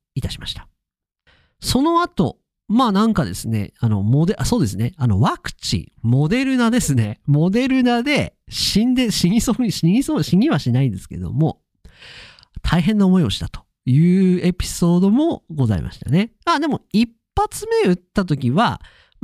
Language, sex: Japanese, male